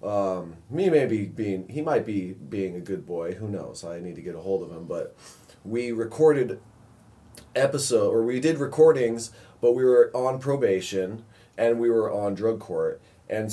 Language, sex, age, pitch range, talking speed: English, male, 30-49, 95-120 Hz, 180 wpm